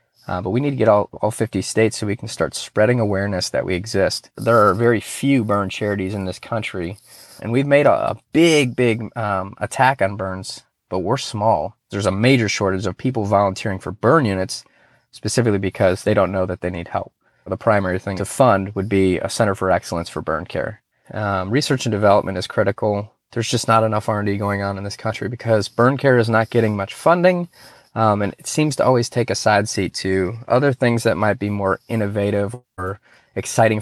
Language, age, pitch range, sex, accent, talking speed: English, 20-39, 100-120 Hz, male, American, 210 wpm